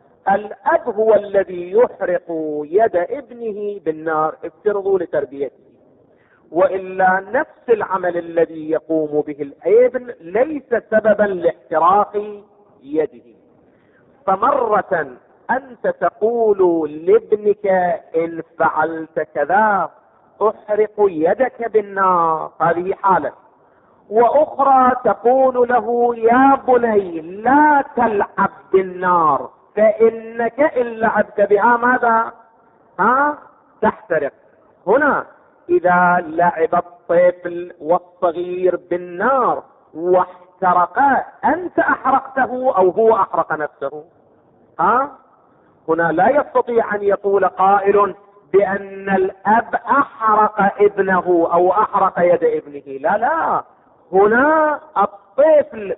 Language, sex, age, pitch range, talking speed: Arabic, male, 50-69, 175-240 Hz, 85 wpm